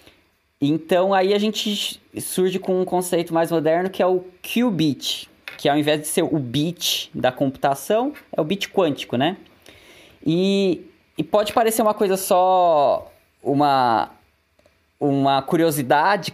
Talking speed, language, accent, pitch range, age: 140 wpm, Portuguese, Brazilian, 140-190 Hz, 20-39